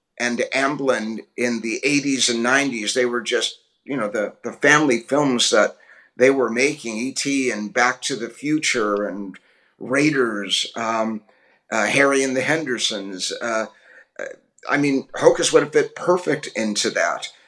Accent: American